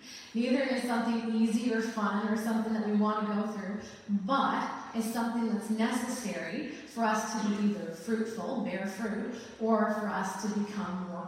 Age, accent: 30-49, American